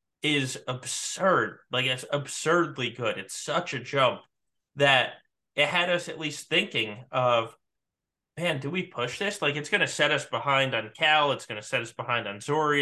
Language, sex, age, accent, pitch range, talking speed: English, male, 30-49, American, 115-150 Hz, 185 wpm